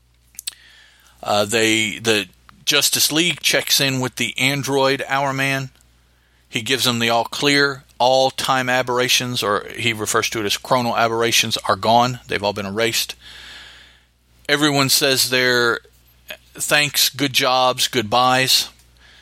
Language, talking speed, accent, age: English, 125 wpm, American, 40-59